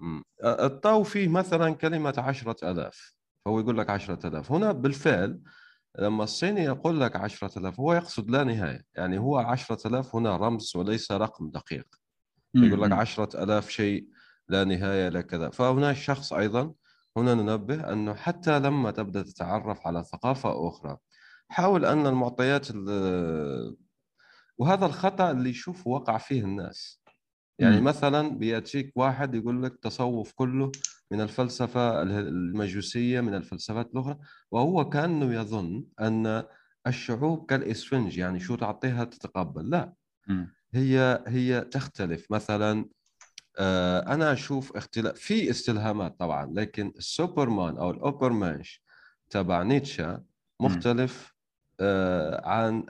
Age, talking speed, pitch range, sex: 30-49, 120 wpm, 100-135 Hz, male